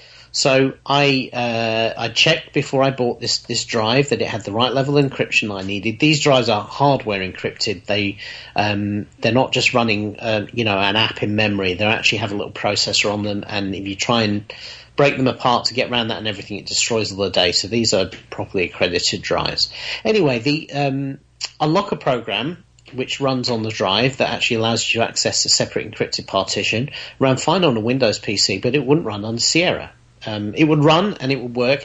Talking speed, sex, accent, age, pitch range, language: 210 wpm, male, British, 40-59, 110-135 Hz, English